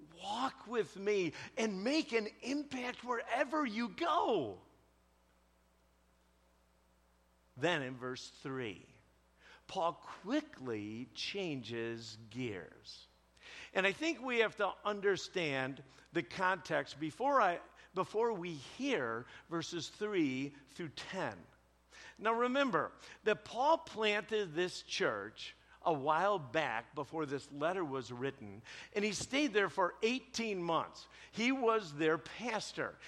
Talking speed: 110 wpm